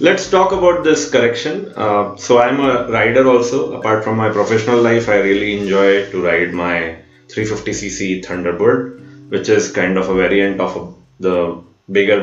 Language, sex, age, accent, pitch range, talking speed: English, male, 20-39, Indian, 95-120 Hz, 160 wpm